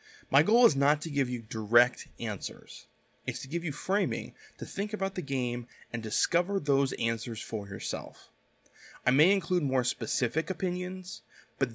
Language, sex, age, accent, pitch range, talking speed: English, male, 20-39, American, 115-160 Hz, 165 wpm